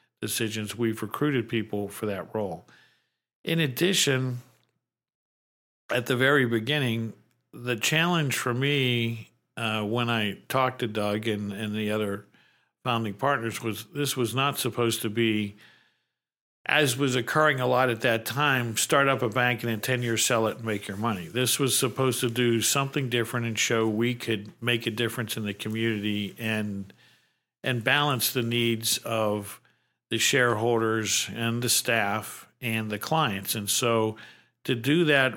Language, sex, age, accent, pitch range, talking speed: English, male, 50-69, American, 110-125 Hz, 160 wpm